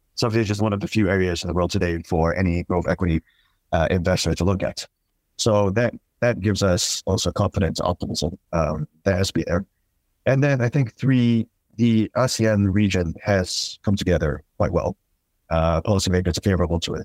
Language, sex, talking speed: English, male, 195 wpm